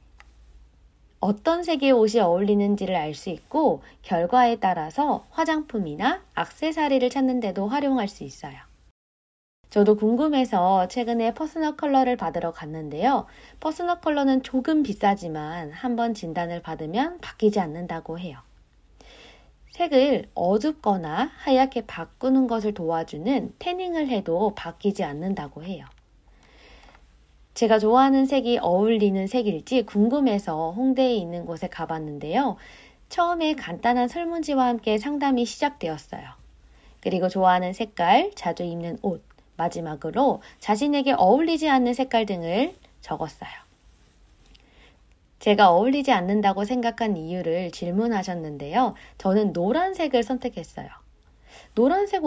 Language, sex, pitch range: Korean, female, 170-260 Hz